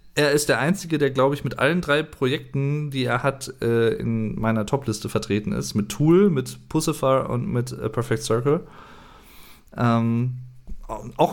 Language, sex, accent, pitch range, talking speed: German, male, German, 110-130 Hz, 160 wpm